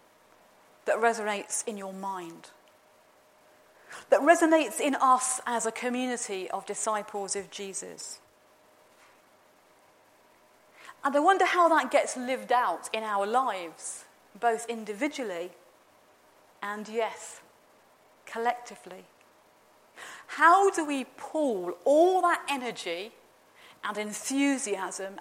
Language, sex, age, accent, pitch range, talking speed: English, female, 40-59, British, 205-280 Hz, 100 wpm